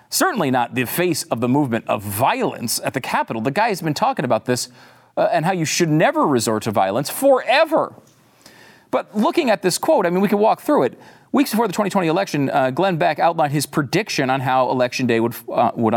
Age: 40-59